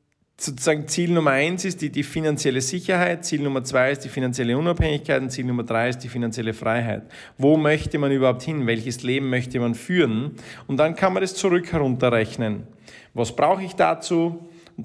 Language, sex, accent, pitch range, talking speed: German, male, Austrian, 125-150 Hz, 180 wpm